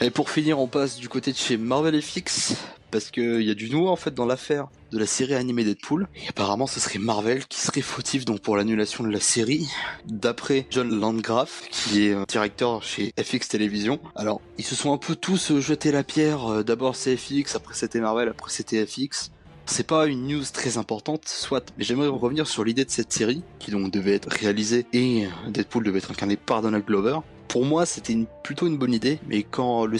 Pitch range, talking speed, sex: 110-135 Hz, 215 wpm, male